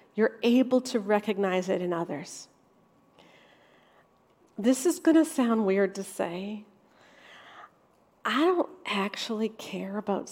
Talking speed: 110 wpm